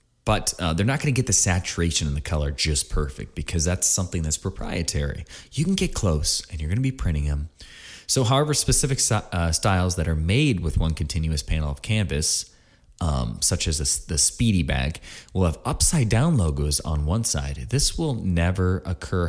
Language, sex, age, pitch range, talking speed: English, male, 30-49, 80-110 Hz, 200 wpm